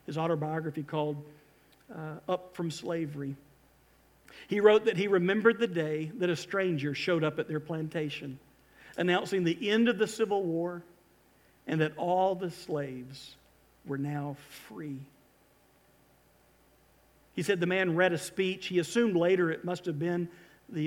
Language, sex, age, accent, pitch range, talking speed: English, male, 50-69, American, 150-215 Hz, 150 wpm